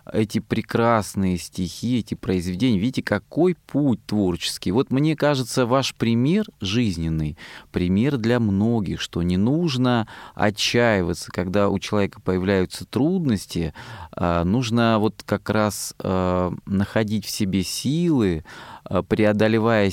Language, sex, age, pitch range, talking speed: Russian, male, 20-39, 95-120 Hz, 110 wpm